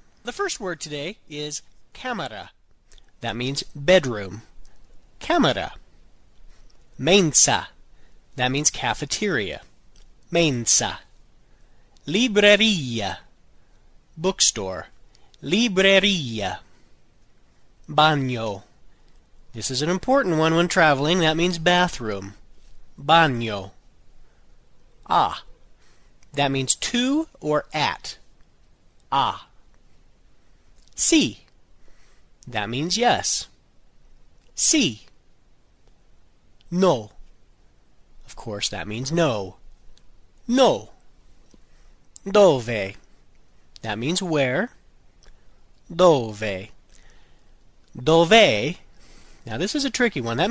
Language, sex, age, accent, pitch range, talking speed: Italian, male, 40-59, American, 110-180 Hz, 75 wpm